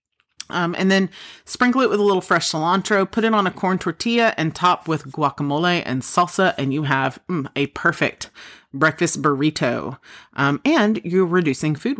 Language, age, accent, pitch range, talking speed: English, 30-49, American, 145-200 Hz, 175 wpm